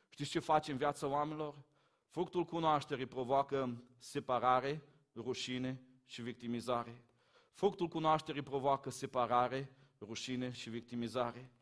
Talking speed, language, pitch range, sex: 105 wpm, Romanian, 130-165 Hz, male